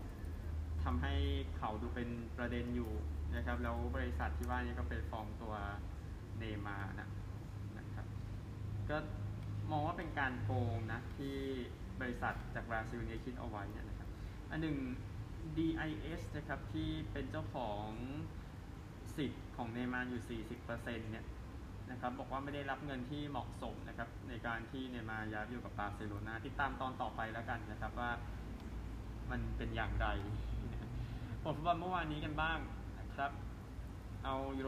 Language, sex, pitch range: Thai, male, 95-120 Hz